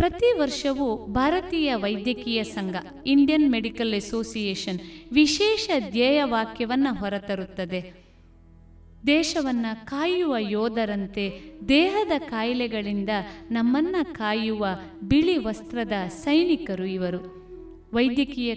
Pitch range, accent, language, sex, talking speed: 205-295 Hz, native, Kannada, female, 75 wpm